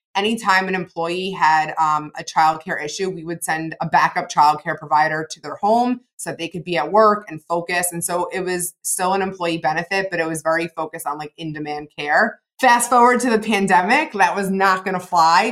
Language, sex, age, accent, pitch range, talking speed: English, female, 20-39, American, 160-195 Hz, 215 wpm